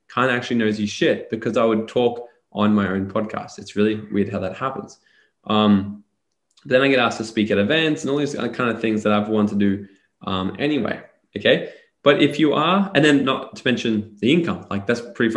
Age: 20-39